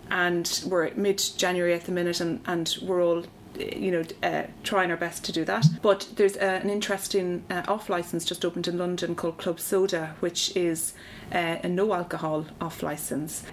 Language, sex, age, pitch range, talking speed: English, female, 30-49, 160-185 Hz, 175 wpm